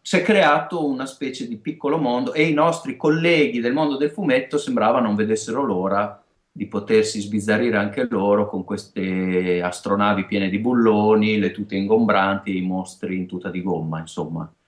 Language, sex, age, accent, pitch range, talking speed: Italian, male, 30-49, native, 95-125 Hz, 170 wpm